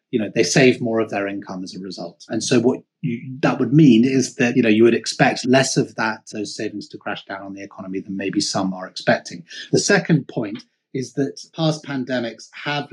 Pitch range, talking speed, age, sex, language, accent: 110-140 Hz, 220 wpm, 30-49, male, English, British